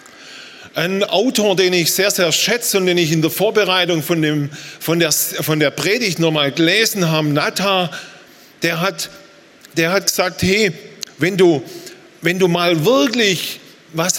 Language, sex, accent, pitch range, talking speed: German, male, German, 140-180 Hz, 155 wpm